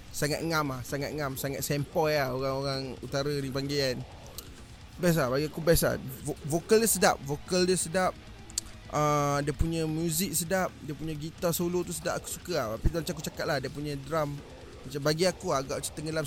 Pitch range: 125-150 Hz